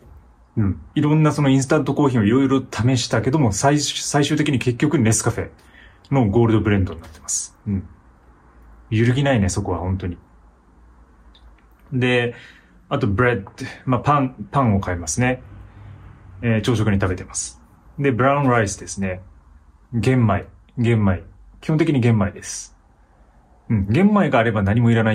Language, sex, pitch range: Japanese, male, 95-130 Hz